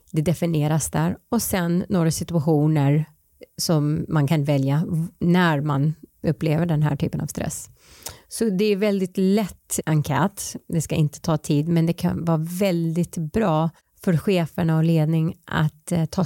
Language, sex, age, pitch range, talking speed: Swedish, female, 30-49, 155-185 Hz, 155 wpm